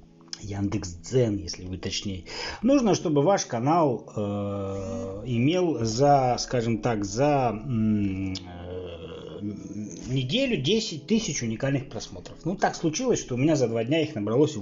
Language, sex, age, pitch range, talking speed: Russian, male, 30-49, 110-150 Hz, 130 wpm